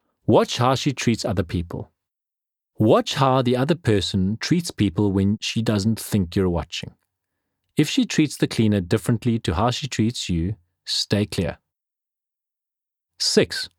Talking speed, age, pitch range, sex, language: 145 wpm, 40-59, 95-155 Hz, male, English